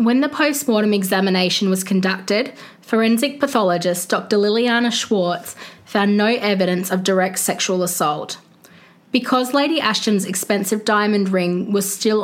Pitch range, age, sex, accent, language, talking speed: 185-225 Hz, 20-39, female, Australian, English, 130 wpm